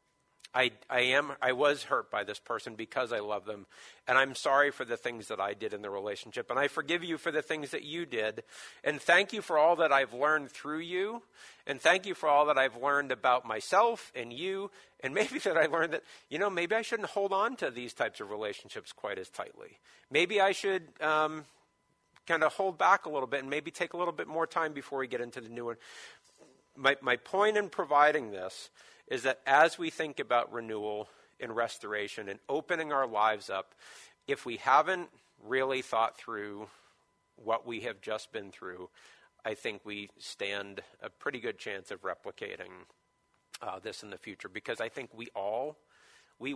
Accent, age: American, 50-69